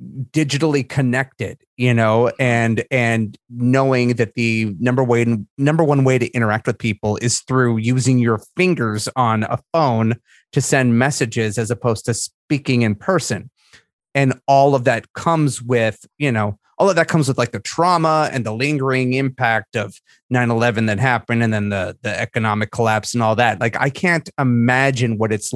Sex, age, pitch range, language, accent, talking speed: male, 30-49, 110-140 Hz, English, American, 175 wpm